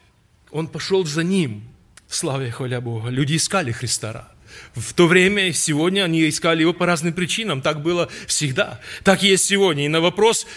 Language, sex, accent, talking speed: Russian, male, native, 180 wpm